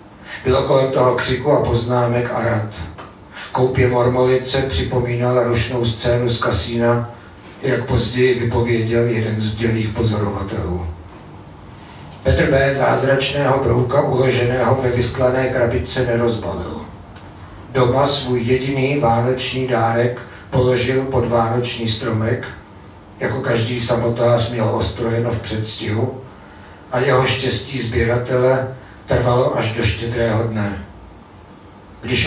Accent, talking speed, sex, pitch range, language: native, 105 wpm, male, 110-125 Hz, Czech